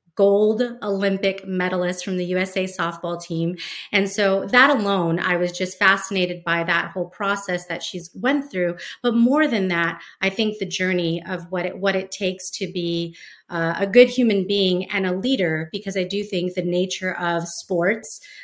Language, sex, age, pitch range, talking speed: English, female, 30-49, 180-205 Hz, 180 wpm